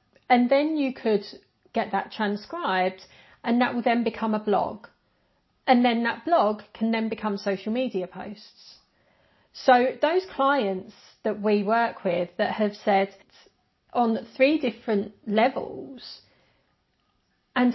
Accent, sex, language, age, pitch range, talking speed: British, female, English, 40-59, 210-270 Hz, 130 wpm